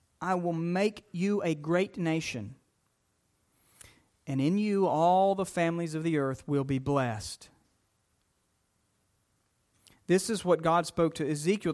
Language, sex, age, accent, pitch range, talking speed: English, male, 40-59, American, 120-180 Hz, 135 wpm